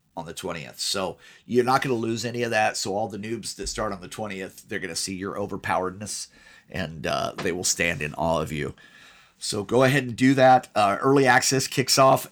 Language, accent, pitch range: English, American, 100-130 Hz